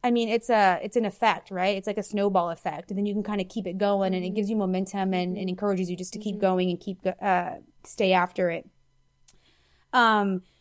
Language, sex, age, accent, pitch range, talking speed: English, female, 20-39, American, 190-220 Hz, 240 wpm